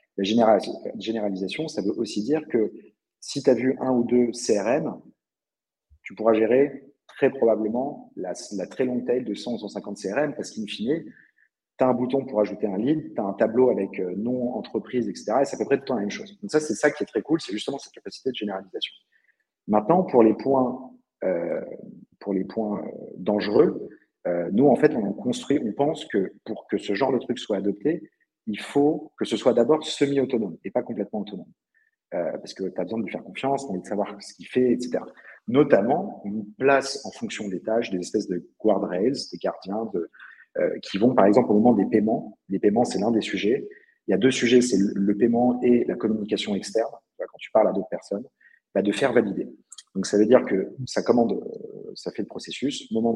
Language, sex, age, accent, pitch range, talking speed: French, male, 50-69, French, 105-135 Hz, 220 wpm